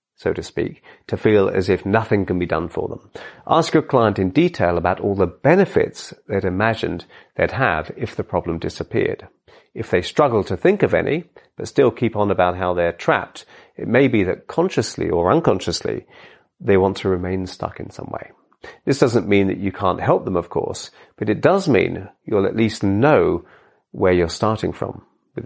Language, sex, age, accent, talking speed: English, male, 40-59, British, 195 wpm